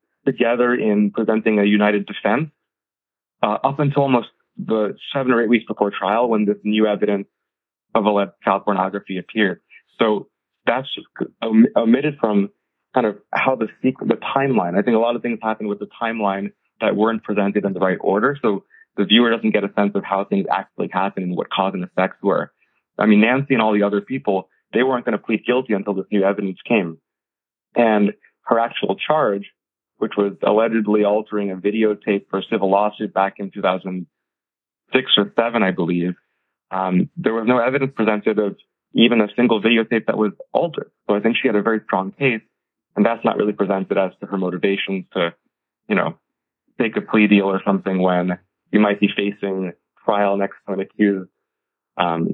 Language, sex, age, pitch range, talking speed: English, male, 30-49, 100-110 Hz, 190 wpm